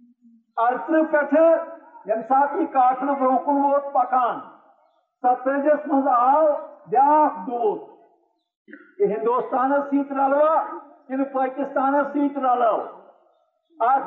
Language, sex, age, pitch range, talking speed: Urdu, male, 50-69, 245-305 Hz, 70 wpm